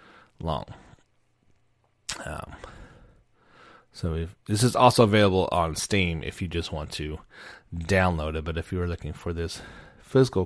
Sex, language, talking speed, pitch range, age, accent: male, English, 145 wpm, 80-105 Hz, 30-49, American